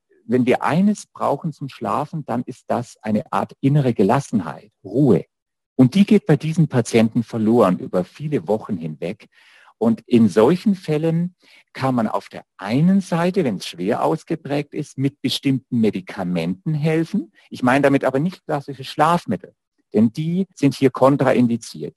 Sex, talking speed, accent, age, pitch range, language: male, 155 wpm, German, 50-69, 120-165 Hz, German